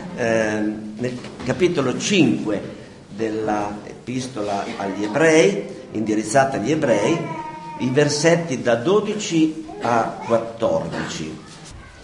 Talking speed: 80 wpm